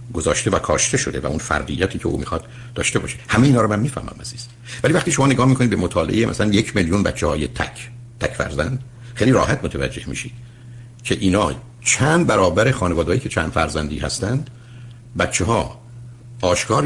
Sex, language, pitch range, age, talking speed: male, Persian, 90-120 Hz, 60-79, 175 wpm